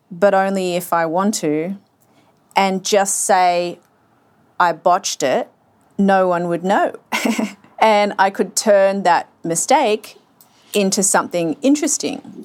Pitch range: 170-220 Hz